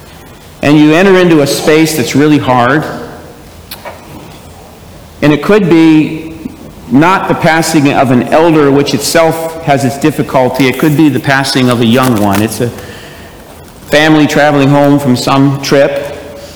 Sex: male